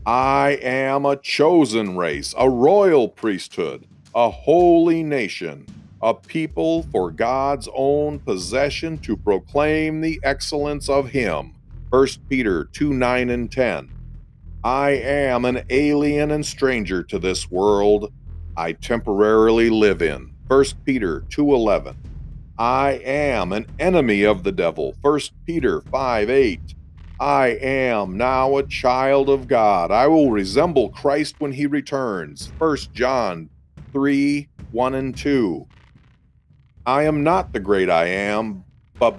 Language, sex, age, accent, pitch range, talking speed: English, male, 40-59, American, 120-145 Hz, 130 wpm